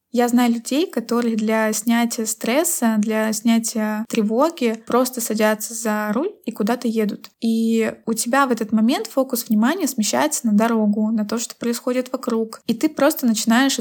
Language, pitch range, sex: Russian, 220-255 Hz, female